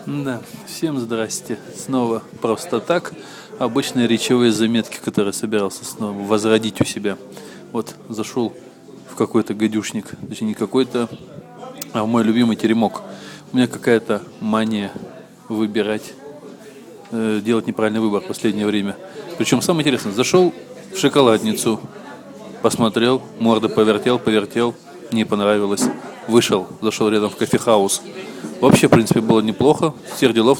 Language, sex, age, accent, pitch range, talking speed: Russian, male, 20-39, native, 105-120 Hz, 125 wpm